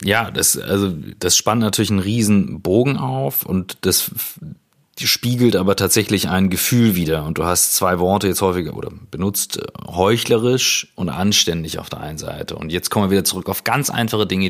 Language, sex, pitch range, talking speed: German, male, 85-100 Hz, 180 wpm